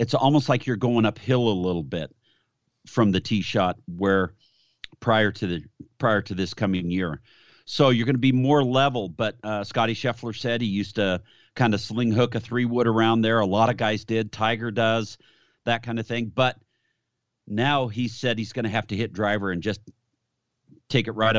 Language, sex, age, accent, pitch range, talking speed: English, male, 50-69, American, 110-130 Hz, 205 wpm